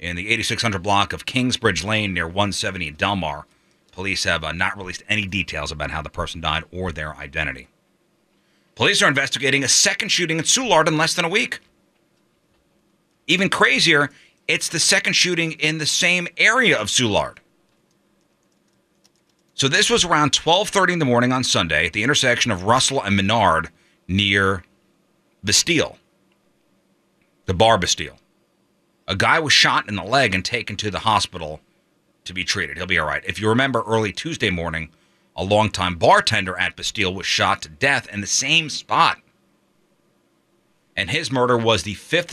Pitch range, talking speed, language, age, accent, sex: 95-140 Hz, 165 wpm, English, 30-49, American, male